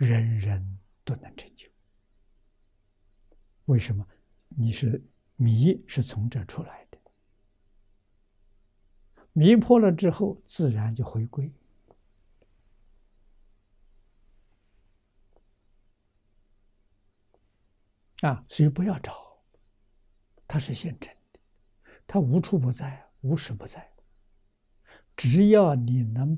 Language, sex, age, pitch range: Chinese, male, 60-79, 100-125 Hz